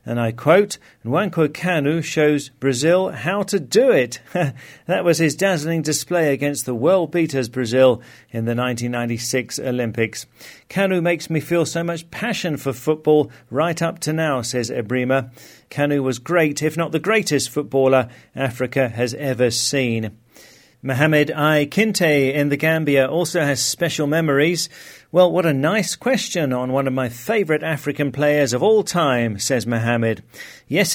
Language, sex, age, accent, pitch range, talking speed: English, male, 40-59, British, 130-165 Hz, 155 wpm